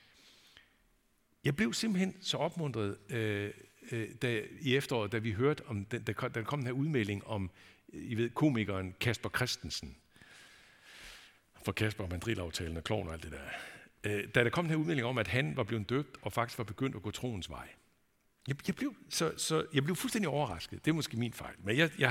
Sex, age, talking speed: male, 60-79, 185 wpm